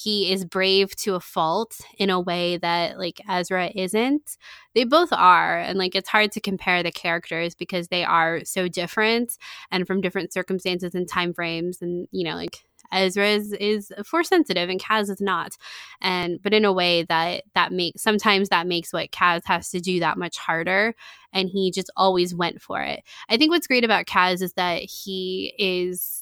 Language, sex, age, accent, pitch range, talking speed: English, female, 20-39, American, 175-205 Hz, 195 wpm